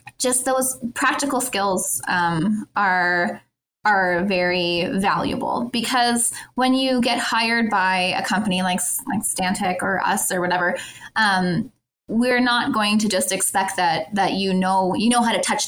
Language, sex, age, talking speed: English, female, 20-39, 155 wpm